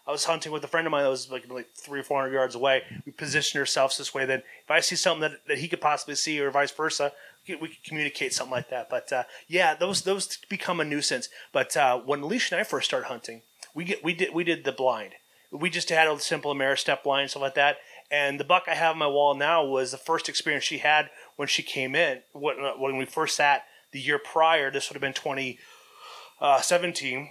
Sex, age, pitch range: male, 30-49, 135-165 Hz